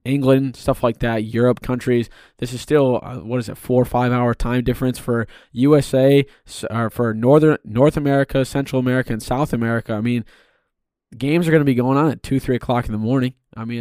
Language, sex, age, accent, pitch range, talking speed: English, male, 20-39, American, 115-135 Hz, 210 wpm